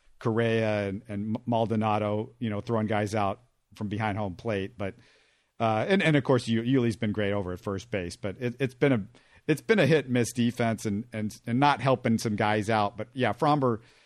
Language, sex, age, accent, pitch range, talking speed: English, male, 50-69, American, 105-125 Hz, 215 wpm